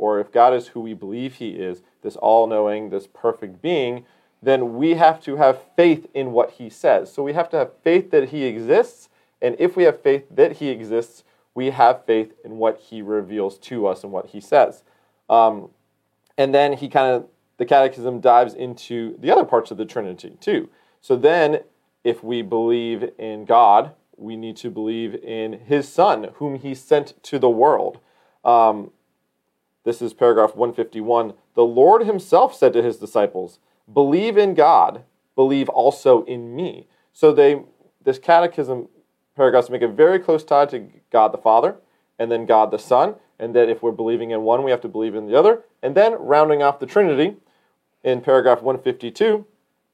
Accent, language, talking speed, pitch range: American, English, 185 wpm, 115-165 Hz